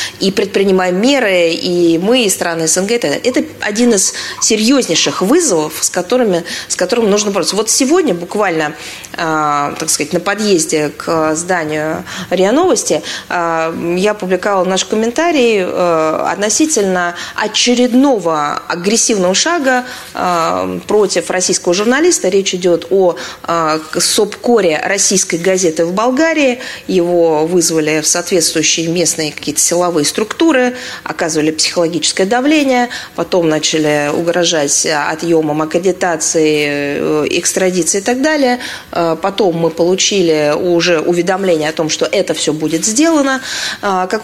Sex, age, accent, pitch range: female, 20-39, native, 170-235 Hz